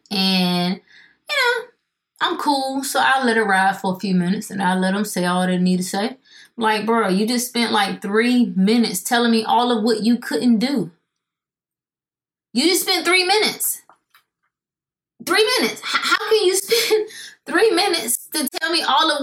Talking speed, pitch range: 180 wpm, 205-295 Hz